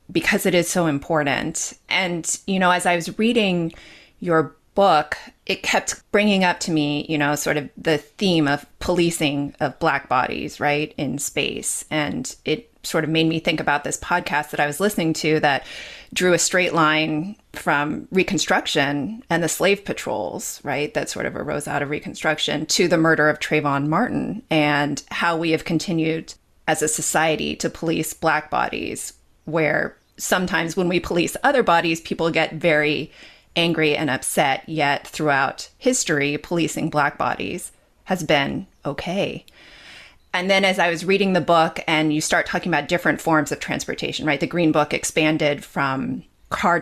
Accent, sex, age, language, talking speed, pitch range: American, female, 30-49, English, 170 wpm, 150-180 Hz